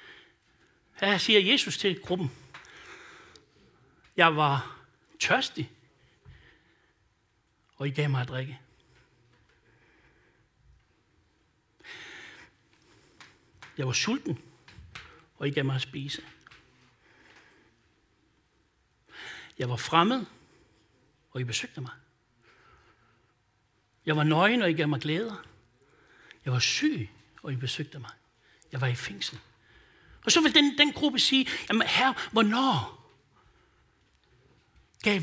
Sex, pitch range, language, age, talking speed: male, 130-200 Hz, Danish, 60-79, 100 wpm